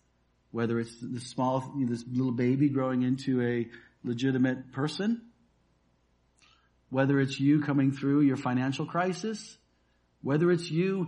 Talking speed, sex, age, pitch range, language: 125 wpm, male, 50-69, 115-155 Hz, English